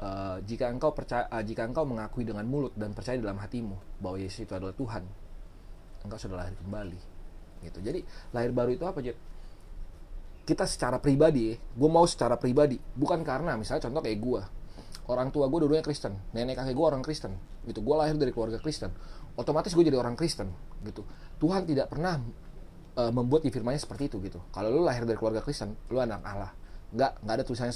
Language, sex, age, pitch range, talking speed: Indonesian, male, 30-49, 95-135 Hz, 190 wpm